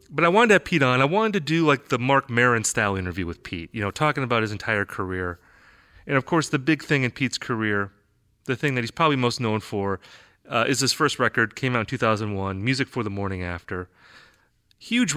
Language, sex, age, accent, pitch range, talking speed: English, male, 30-49, American, 105-140 Hz, 230 wpm